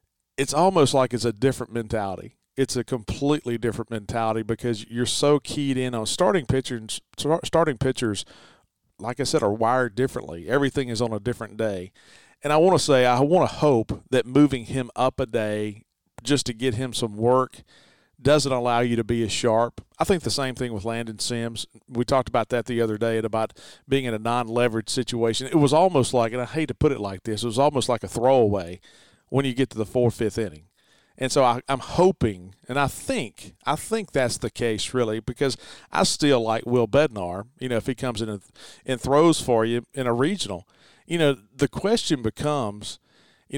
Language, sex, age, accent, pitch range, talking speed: English, male, 40-59, American, 115-135 Hz, 205 wpm